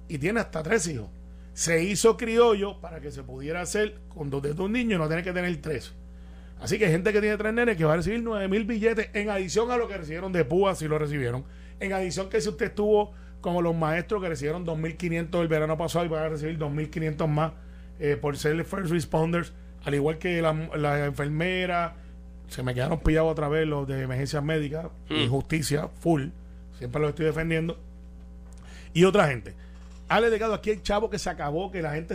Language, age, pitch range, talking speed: Spanish, 30-49, 135-195 Hz, 210 wpm